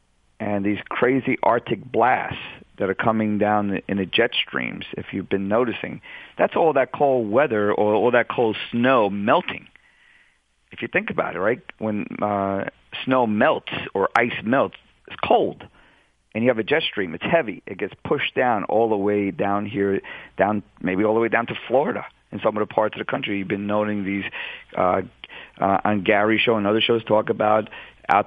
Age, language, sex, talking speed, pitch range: 50-69, English, male, 190 wpm, 100-110 Hz